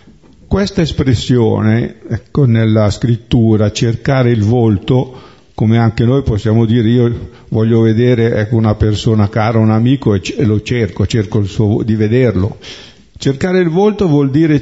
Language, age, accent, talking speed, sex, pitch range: Italian, 50-69, native, 145 wpm, male, 110-135 Hz